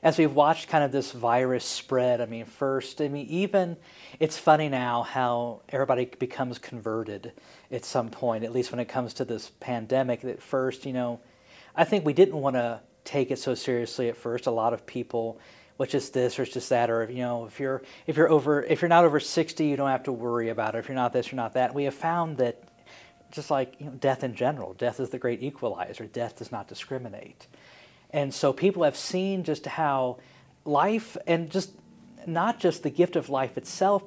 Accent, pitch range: American, 120-155 Hz